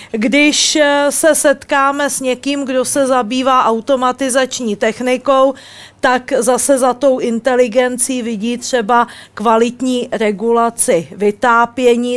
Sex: female